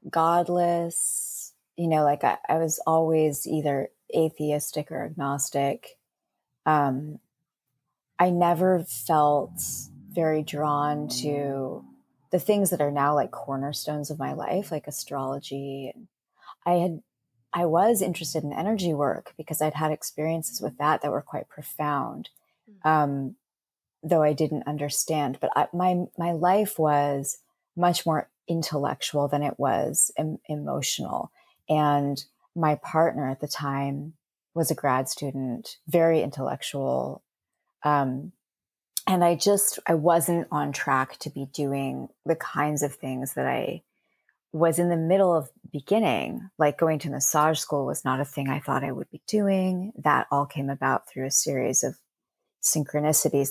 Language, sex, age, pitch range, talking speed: English, female, 30-49, 140-170 Hz, 140 wpm